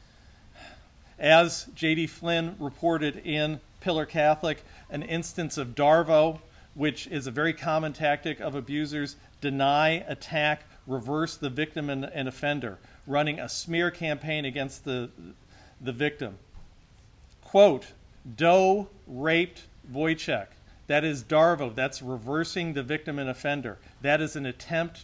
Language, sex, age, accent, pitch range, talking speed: English, male, 50-69, American, 135-160 Hz, 125 wpm